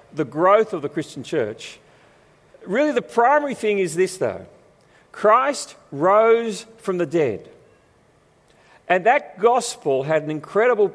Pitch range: 160-230 Hz